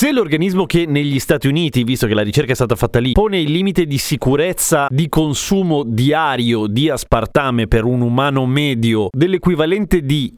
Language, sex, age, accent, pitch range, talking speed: Italian, male, 30-49, native, 115-160 Hz, 175 wpm